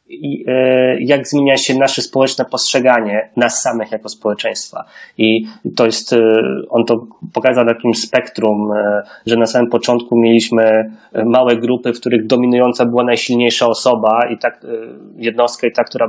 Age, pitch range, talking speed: 20-39, 115-125 Hz, 140 wpm